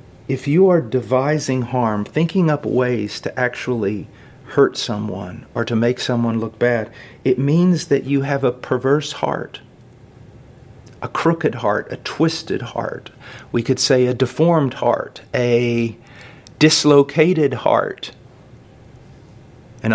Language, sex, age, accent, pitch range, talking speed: English, male, 40-59, American, 120-145 Hz, 125 wpm